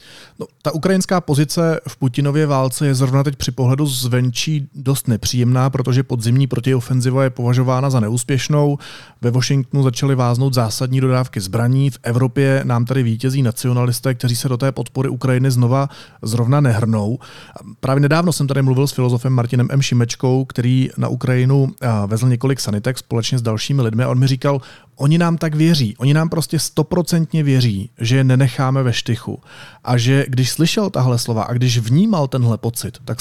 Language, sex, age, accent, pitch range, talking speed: Czech, male, 30-49, native, 120-140 Hz, 170 wpm